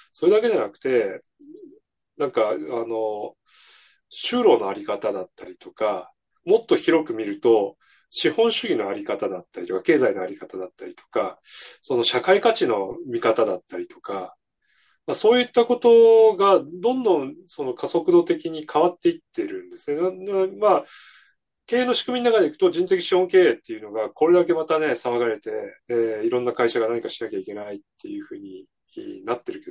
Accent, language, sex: native, Japanese, male